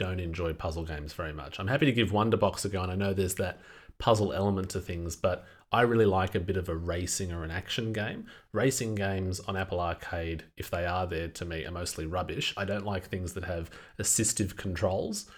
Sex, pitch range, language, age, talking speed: male, 90-105 Hz, English, 30-49, 220 wpm